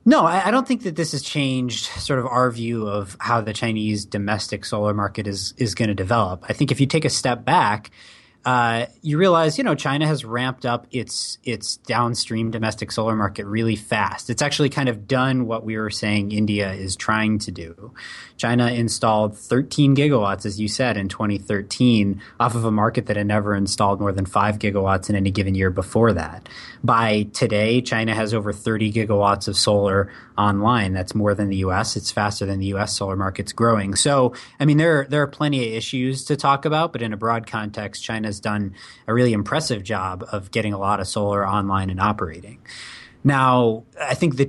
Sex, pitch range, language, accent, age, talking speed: male, 105-125 Hz, English, American, 20-39, 200 wpm